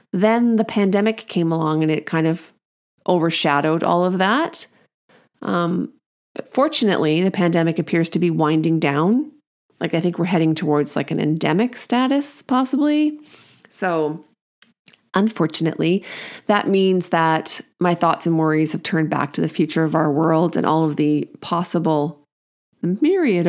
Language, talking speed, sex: English, 145 wpm, female